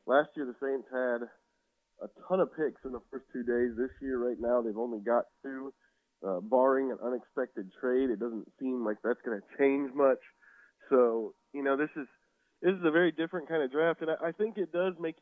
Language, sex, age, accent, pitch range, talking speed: English, male, 20-39, American, 120-150 Hz, 220 wpm